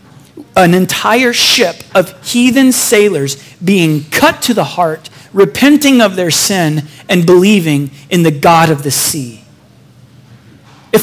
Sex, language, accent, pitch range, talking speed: male, English, American, 145-200 Hz, 130 wpm